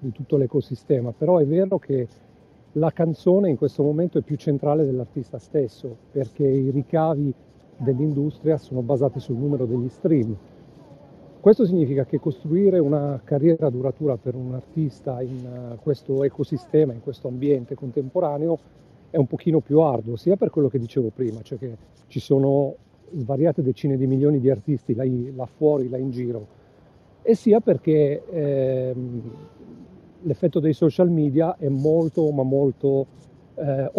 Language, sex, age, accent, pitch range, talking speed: Italian, male, 40-59, native, 130-155 Hz, 150 wpm